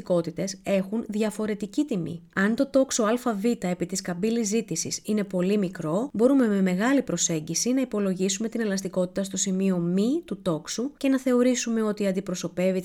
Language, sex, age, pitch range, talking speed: Greek, female, 30-49, 185-240 Hz, 150 wpm